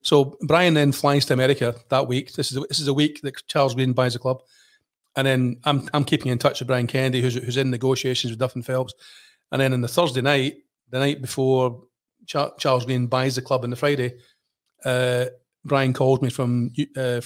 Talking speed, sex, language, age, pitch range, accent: 210 wpm, male, English, 40-59, 125-135 Hz, British